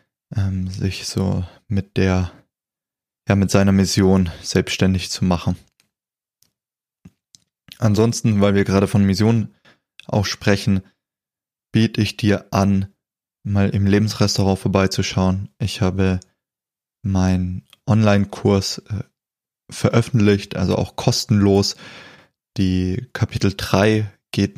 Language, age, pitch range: German, 20-39, 95-105 Hz